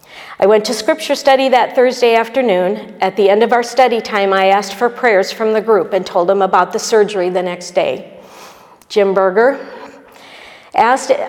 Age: 50-69